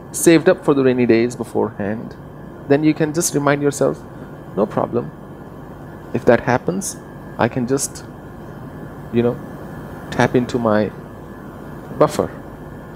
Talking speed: 125 wpm